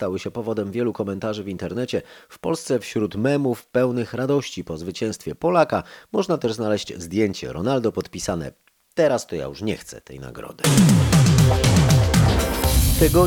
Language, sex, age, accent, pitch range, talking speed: Polish, male, 30-49, native, 95-120 Hz, 140 wpm